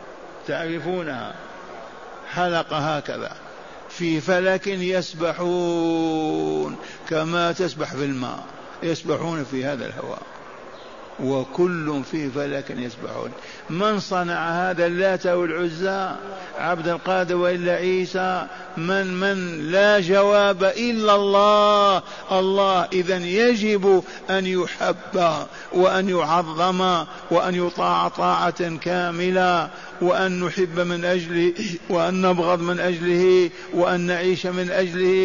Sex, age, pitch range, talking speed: male, 50-69, 175-190 Hz, 95 wpm